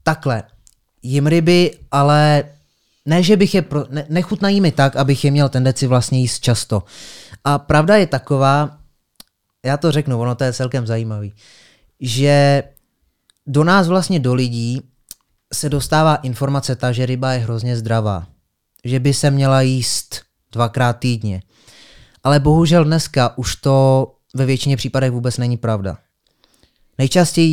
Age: 20-39